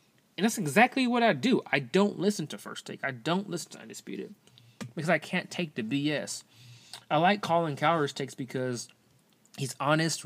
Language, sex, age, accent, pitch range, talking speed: English, male, 20-39, American, 115-150 Hz, 180 wpm